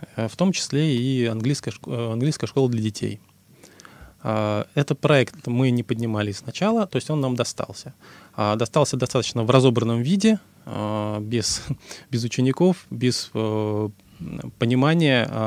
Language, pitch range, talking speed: Russian, 110-140 Hz, 115 wpm